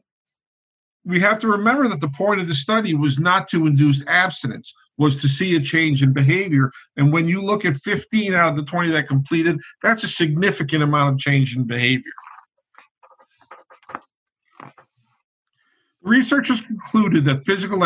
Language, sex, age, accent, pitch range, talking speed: English, male, 50-69, American, 145-205 Hz, 155 wpm